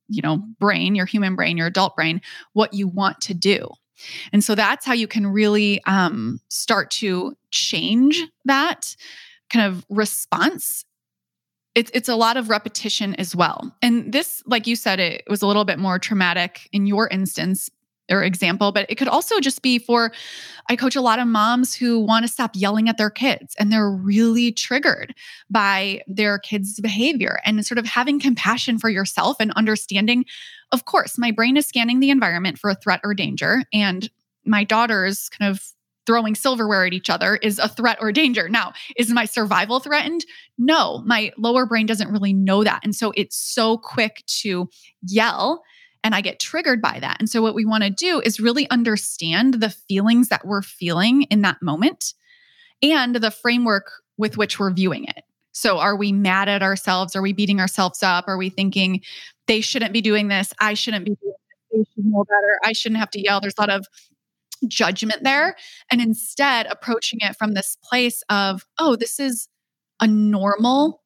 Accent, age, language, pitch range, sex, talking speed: American, 20-39, English, 200-240 Hz, female, 185 wpm